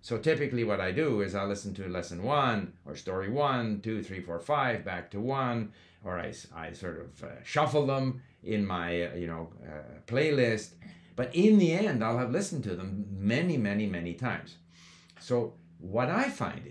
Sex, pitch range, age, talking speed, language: male, 100-135 Hz, 60-79, 190 wpm, English